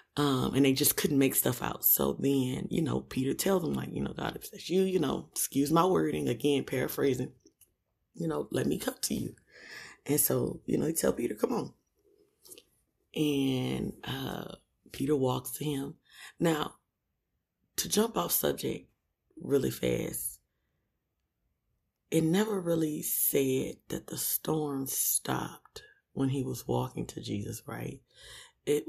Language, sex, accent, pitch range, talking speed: English, female, American, 125-165 Hz, 150 wpm